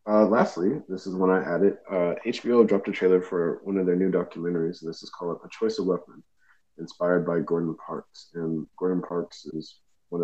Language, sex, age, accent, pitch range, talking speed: English, male, 30-49, American, 80-90 Hz, 210 wpm